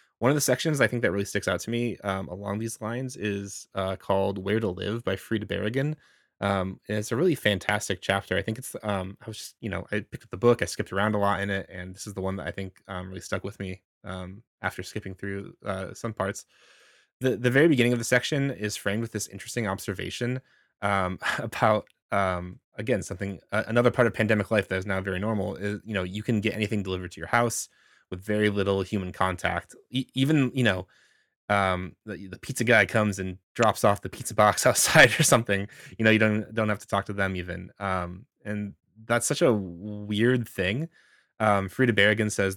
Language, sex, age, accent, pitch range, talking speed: English, male, 20-39, American, 95-110 Hz, 225 wpm